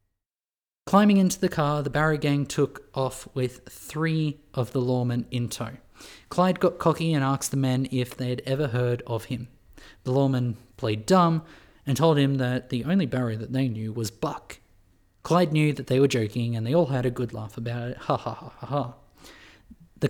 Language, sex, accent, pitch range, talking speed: English, male, Australian, 115-155 Hz, 195 wpm